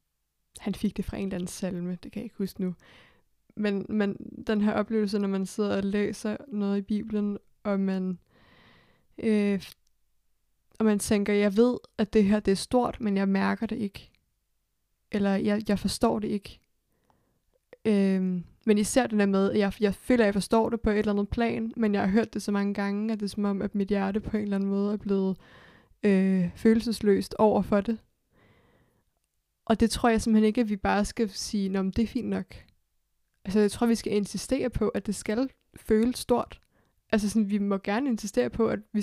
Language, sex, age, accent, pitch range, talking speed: Danish, female, 20-39, native, 195-225 Hz, 205 wpm